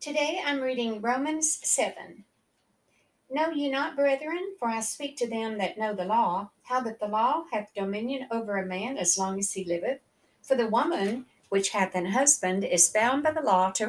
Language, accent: English, American